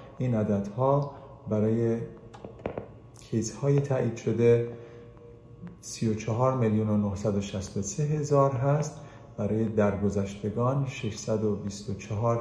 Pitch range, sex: 105-135 Hz, male